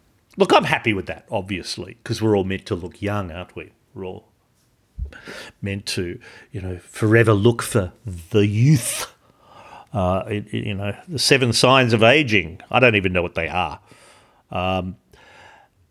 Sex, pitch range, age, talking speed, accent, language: male, 95-130 Hz, 50-69, 160 wpm, Australian, English